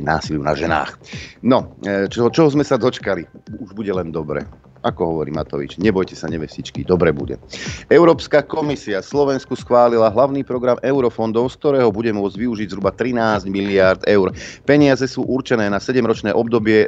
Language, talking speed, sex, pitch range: Slovak, 155 wpm, male, 95-120 Hz